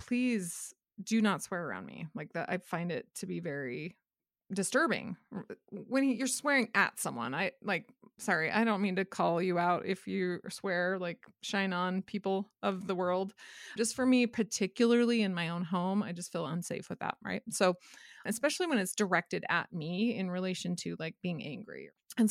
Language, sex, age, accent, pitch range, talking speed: English, female, 20-39, American, 180-225 Hz, 185 wpm